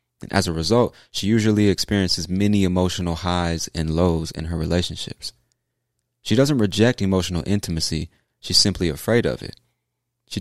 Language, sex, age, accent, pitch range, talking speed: English, male, 30-49, American, 85-105 Hz, 150 wpm